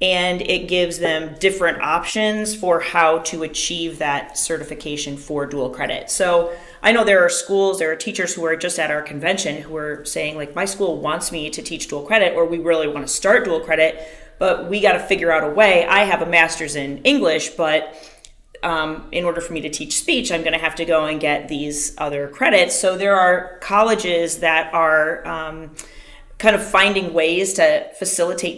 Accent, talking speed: American, 205 wpm